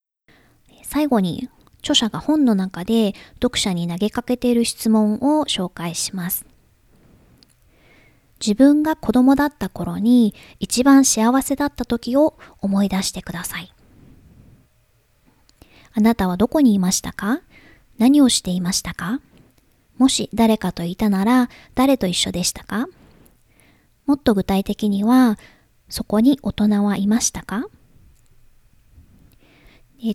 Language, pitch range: Japanese, 190-250 Hz